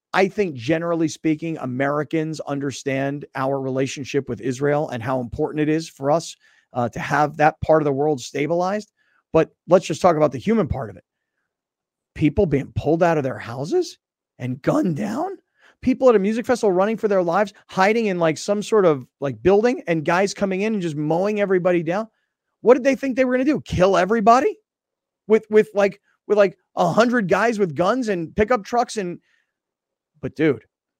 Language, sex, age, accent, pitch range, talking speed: English, male, 30-49, American, 150-210 Hz, 190 wpm